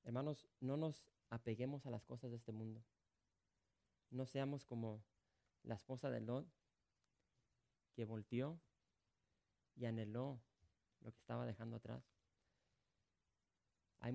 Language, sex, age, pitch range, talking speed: English, male, 30-49, 110-130 Hz, 115 wpm